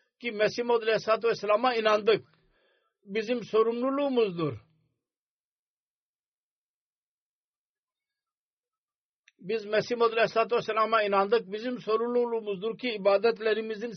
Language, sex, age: Turkish, male, 50-69